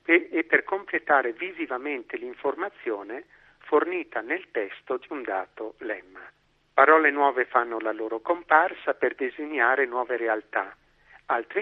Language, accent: Italian, native